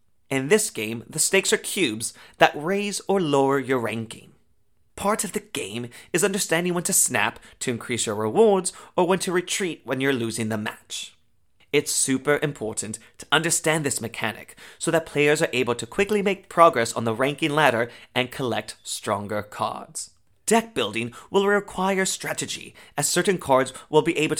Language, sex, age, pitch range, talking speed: English, male, 30-49, 115-170 Hz, 170 wpm